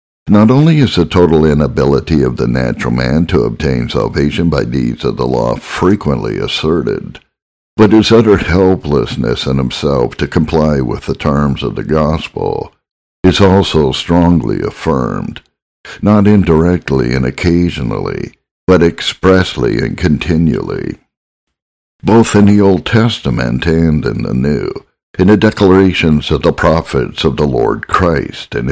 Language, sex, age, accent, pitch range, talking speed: English, male, 60-79, American, 70-95 Hz, 140 wpm